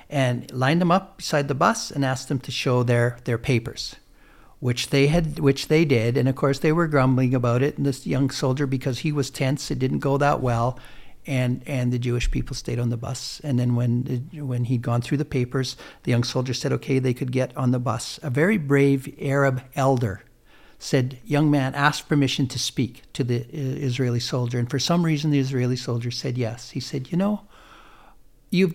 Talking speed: 215 wpm